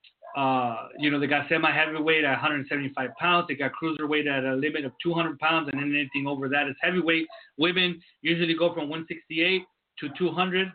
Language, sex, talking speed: English, male, 180 wpm